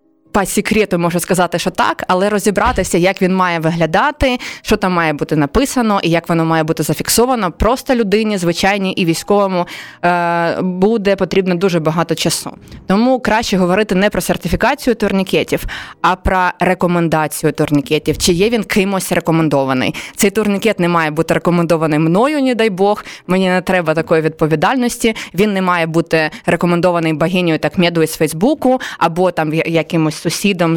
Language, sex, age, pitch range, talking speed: Ukrainian, female, 20-39, 165-205 Hz, 150 wpm